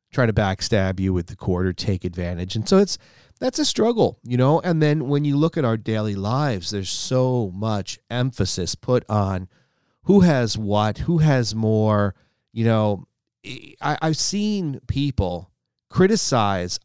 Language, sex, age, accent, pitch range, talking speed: English, male, 40-59, American, 110-150 Hz, 160 wpm